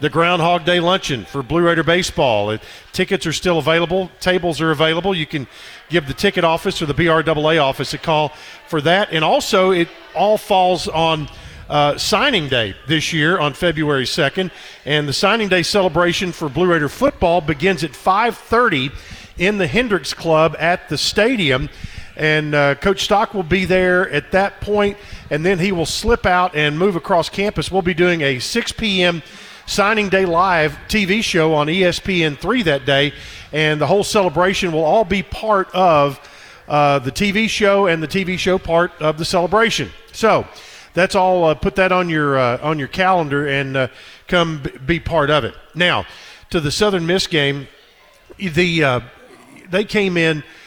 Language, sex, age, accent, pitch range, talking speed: English, male, 50-69, American, 150-190 Hz, 180 wpm